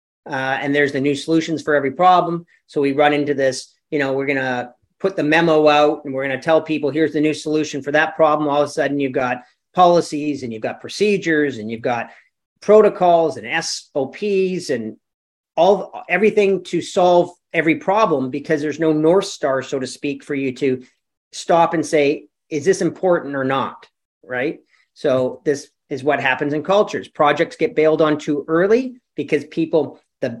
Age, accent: 40-59, American